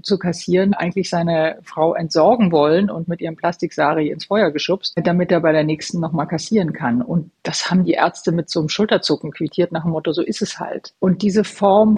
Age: 50-69